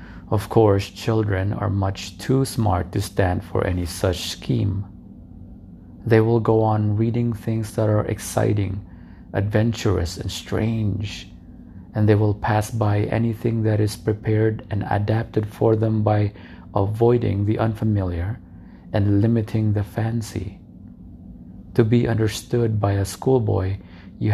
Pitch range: 95-110 Hz